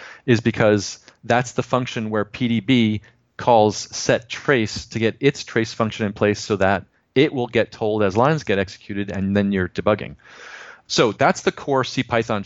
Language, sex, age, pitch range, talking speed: English, male, 40-59, 100-120 Hz, 175 wpm